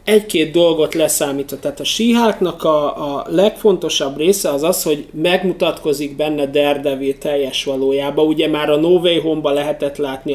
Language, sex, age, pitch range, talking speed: Hungarian, male, 30-49, 145-180 Hz, 145 wpm